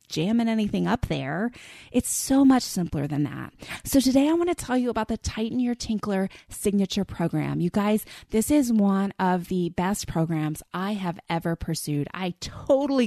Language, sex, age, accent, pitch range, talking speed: English, female, 20-39, American, 170-250 Hz, 180 wpm